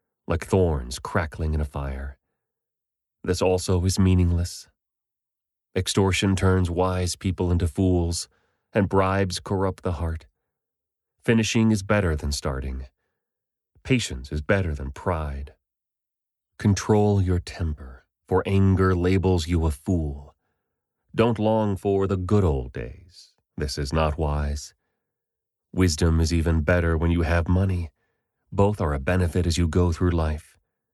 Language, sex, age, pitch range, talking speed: English, male, 30-49, 80-95 Hz, 130 wpm